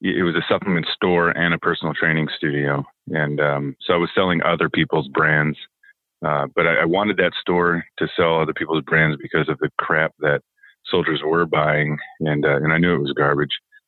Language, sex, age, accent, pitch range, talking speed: English, male, 30-49, American, 75-85 Hz, 205 wpm